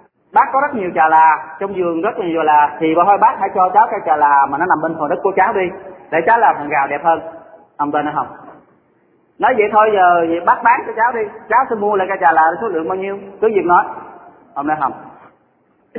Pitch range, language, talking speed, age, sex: 160-200 Hz, Vietnamese, 250 wpm, 30-49, male